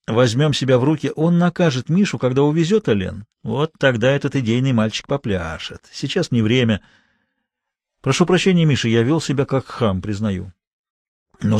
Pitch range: 110-160 Hz